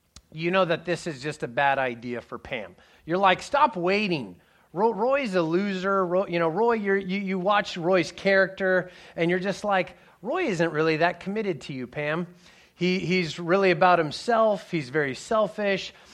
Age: 30-49